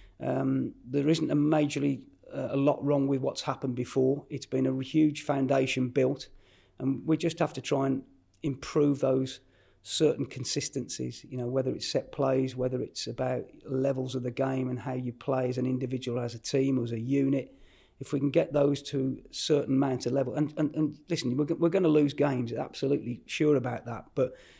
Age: 40-59